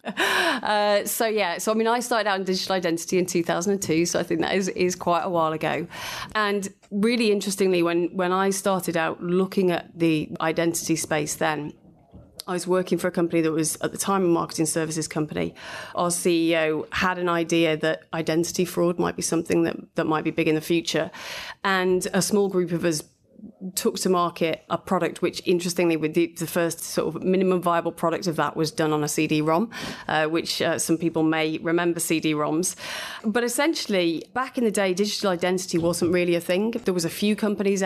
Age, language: 30-49, English